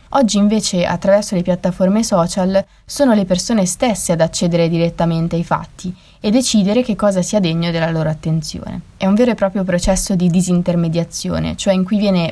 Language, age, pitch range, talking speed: Italian, 20-39, 170-200 Hz, 175 wpm